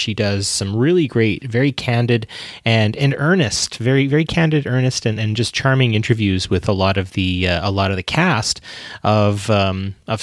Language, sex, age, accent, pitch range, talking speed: English, male, 30-49, American, 100-120 Hz, 195 wpm